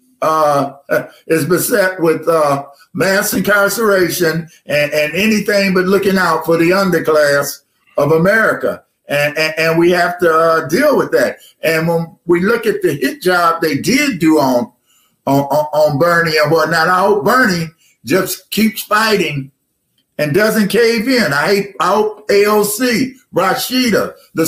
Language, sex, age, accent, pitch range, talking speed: English, male, 50-69, American, 160-215 Hz, 150 wpm